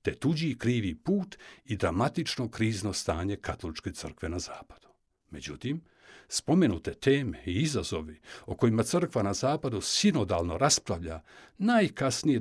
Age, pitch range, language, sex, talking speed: 60-79, 105-160 Hz, Croatian, male, 120 wpm